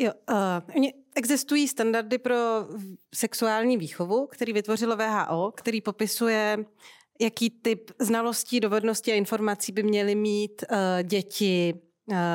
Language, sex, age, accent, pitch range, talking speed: Czech, female, 30-49, native, 180-225 Hz, 115 wpm